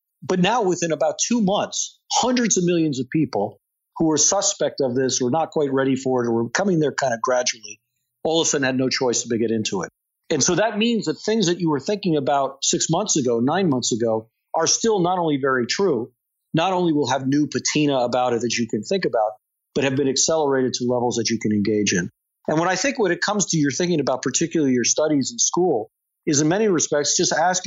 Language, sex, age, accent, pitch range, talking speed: English, male, 50-69, American, 125-160 Hz, 240 wpm